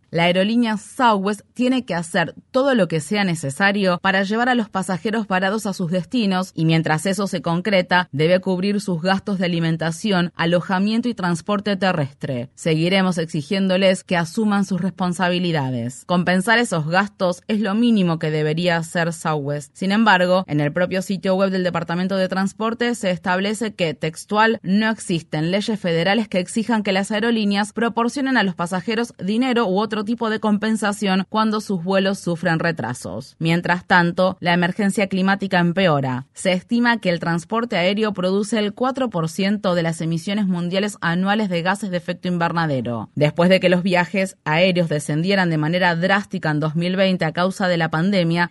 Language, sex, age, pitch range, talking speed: Spanish, female, 20-39, 170-205 Hz, 165 wpm